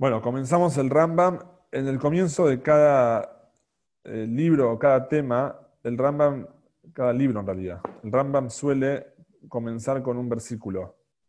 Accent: Argentinian